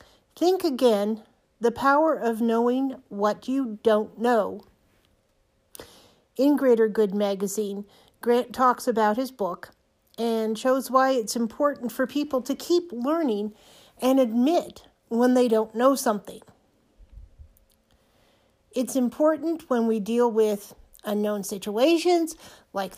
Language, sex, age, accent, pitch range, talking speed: English, female, 50-69, American, 215-270 Hz, 120 wpm